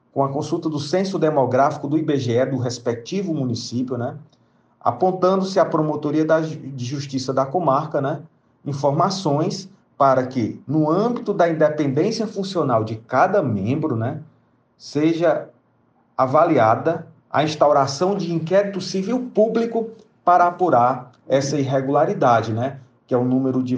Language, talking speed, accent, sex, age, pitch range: Portuguese, 130 wpm, Brazilian, male, 40-59, 135-175 Hz